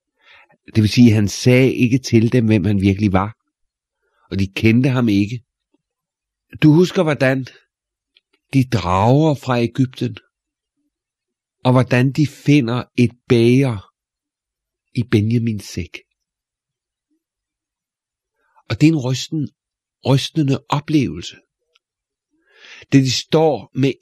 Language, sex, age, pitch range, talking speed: Danish, male, 50-69, 110-145 Hz, 110 wpm